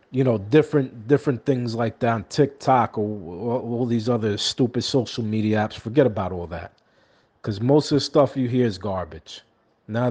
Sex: male